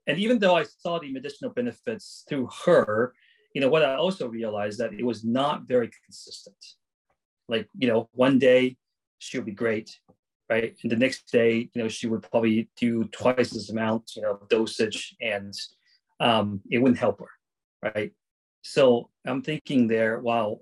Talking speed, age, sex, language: 175 wpm, 30-49, male, English